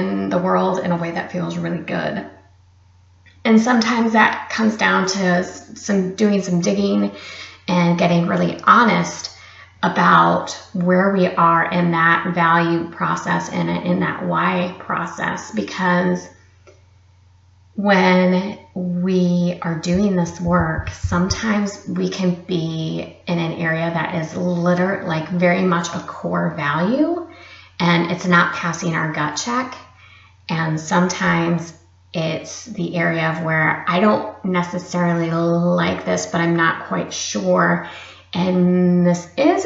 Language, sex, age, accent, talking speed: English, female, 30-49, American, 130 wpm